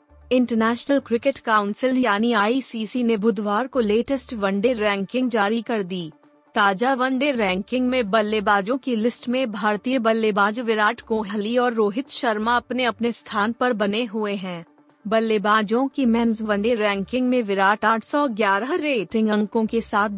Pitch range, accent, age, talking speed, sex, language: 210-245 Hz, native, 30-49, 145 wpm, female, Hindi